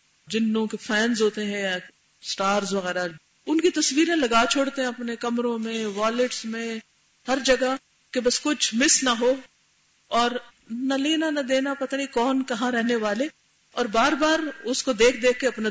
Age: 50-69